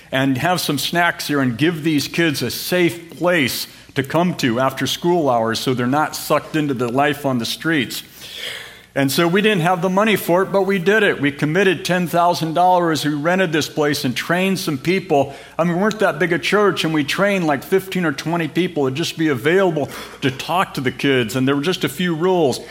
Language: English